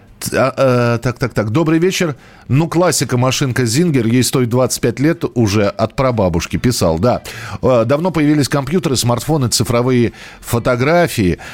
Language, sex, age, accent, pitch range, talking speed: Russian, male, 40-59, native, 110-145 Hz, 125 wpm